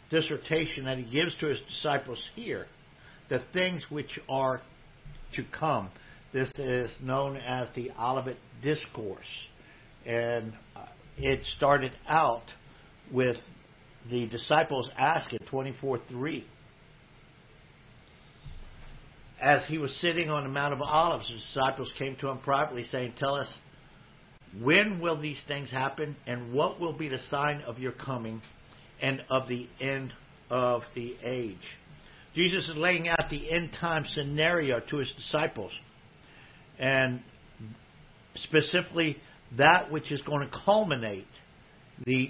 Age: 60-79